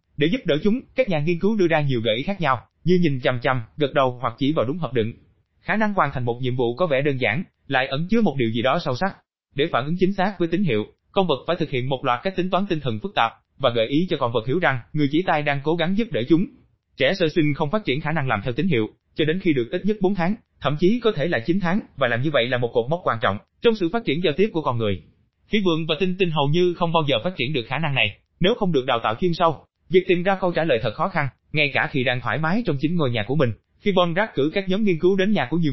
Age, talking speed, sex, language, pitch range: 20-39, 315 wpm, male, Vietnamese, 130-185 Hz